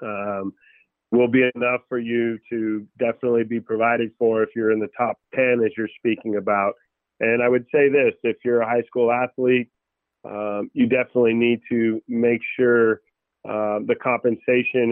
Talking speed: 170 wpm